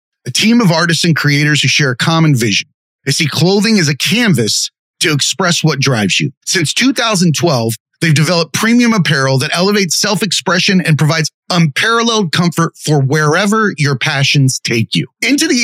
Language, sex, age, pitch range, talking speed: English, male, 30-49, 140-185 Hz, 165 wpm